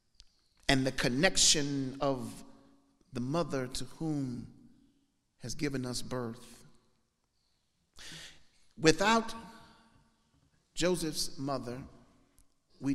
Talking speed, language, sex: 75 wpm, English, male